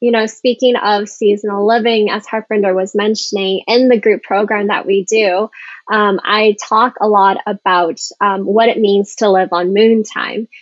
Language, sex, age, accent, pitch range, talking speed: English, female, 20-39, American, 205-240 Hz, 180 wpm